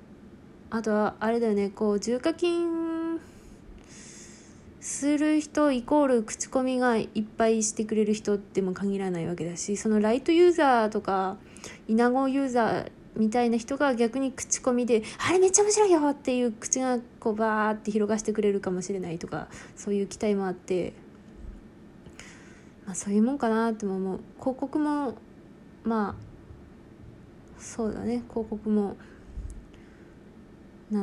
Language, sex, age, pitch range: Japanese, female, 20-39, 205-250 Hz